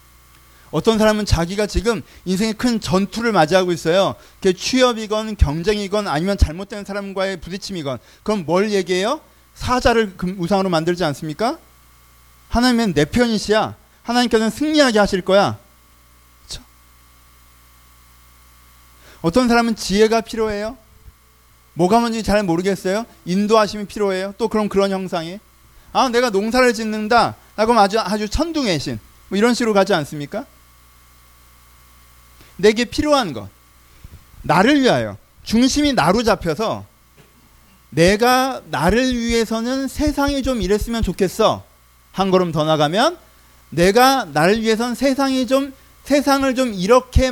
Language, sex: Korean, male